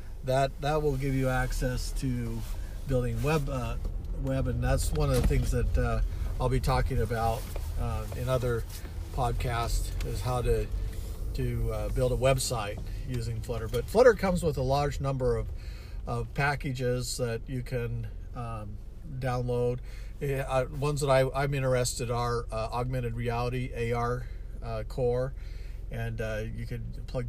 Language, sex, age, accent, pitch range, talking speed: English, male, 50-69, American, 105-125 Hz, 155 wpm